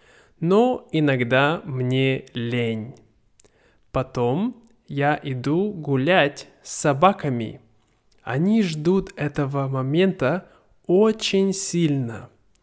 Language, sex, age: Russian, male, 20-39